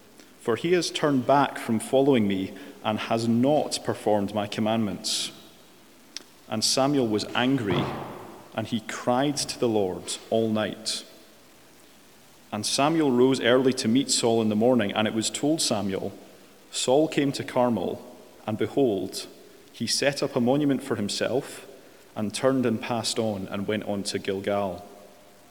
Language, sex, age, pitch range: English, male, 30-49, 110-130 Hz